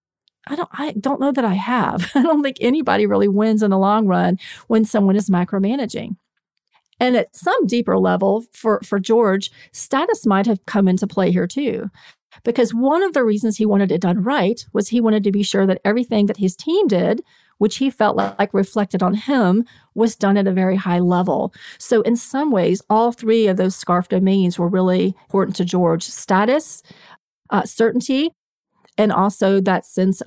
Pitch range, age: 190-240 Hz, 40-59